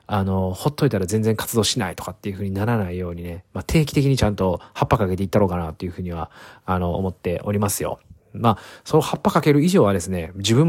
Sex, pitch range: male, 85-110 Hz